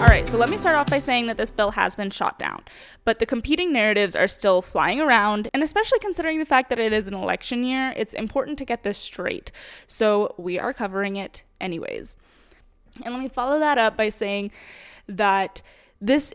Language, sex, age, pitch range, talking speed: English, female, 10-29, 200-275 Hz, 210 wpm